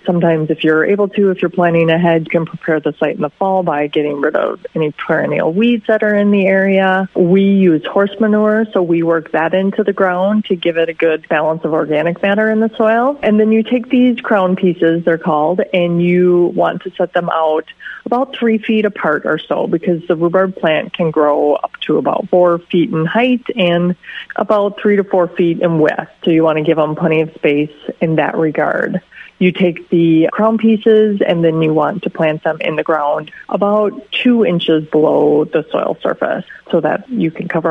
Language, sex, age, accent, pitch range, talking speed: English, female, 30-49, American, 165-210 Hz, 215 wpm